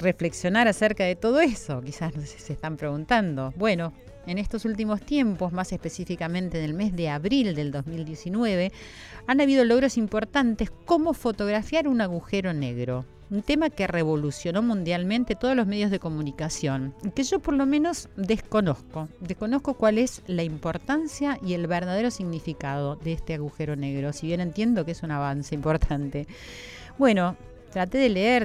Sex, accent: female, Argentinian